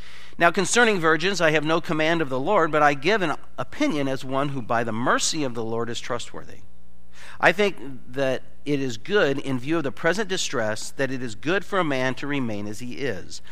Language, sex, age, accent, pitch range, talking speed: English, male, 50-69, American, 110-160 Hz, 220 wpm